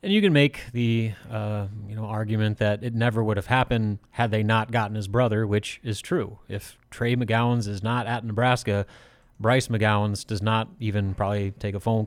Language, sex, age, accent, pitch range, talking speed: English, male, 30-49, American, 105-125 Hz, 200 wpm